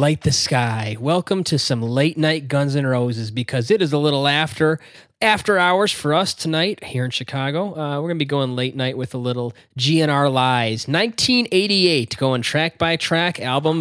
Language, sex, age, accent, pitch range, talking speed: English, male, 20-39, American, 120-160 Hz, 190 wpm